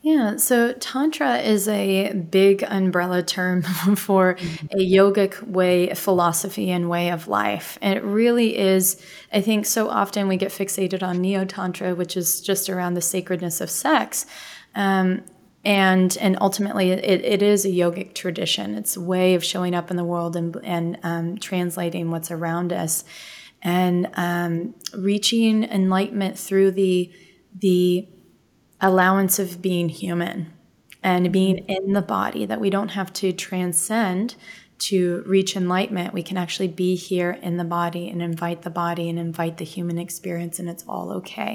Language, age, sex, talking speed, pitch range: English, 20-39, female, 160 wpm, 175-195 Hz